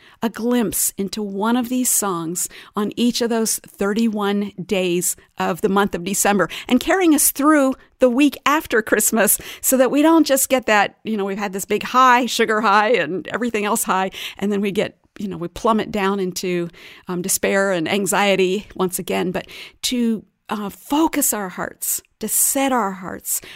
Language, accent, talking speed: English, American, 185 wpm